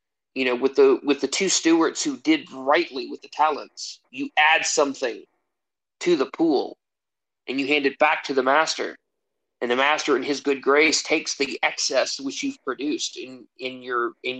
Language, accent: English, American